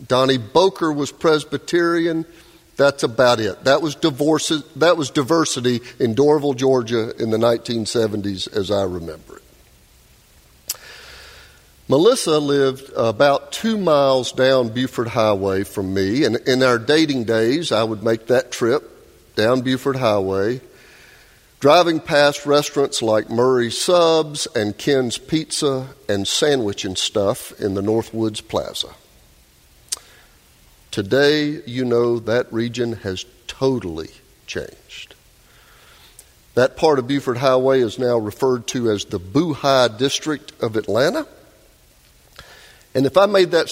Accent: American